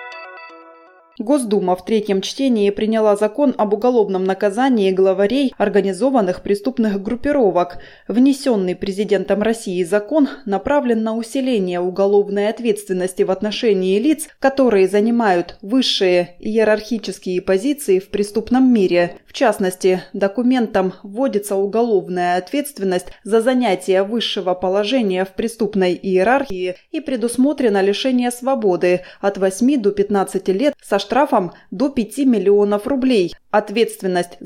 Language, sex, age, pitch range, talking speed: Russian, female, 20-39, 185-235 Hz, 110 wpm